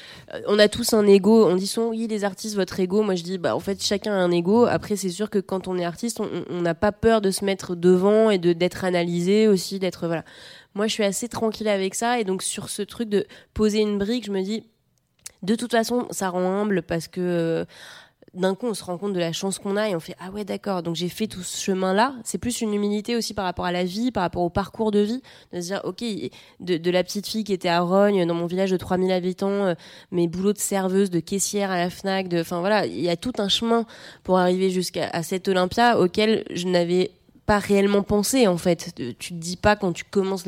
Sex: female